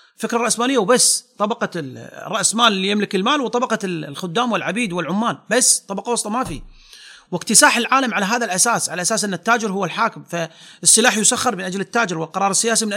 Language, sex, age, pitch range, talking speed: Arabic, male, 30-49, 180-230 Hz, 165 wpm